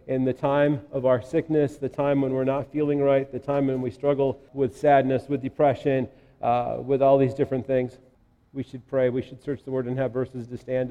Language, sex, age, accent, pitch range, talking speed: English, male, 40-59, American, 130-165 Hz, 225 wpm